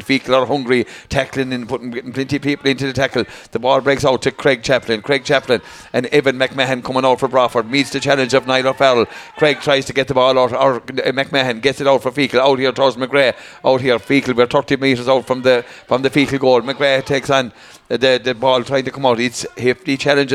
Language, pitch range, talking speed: English, 130-145 Hz, 235 wpm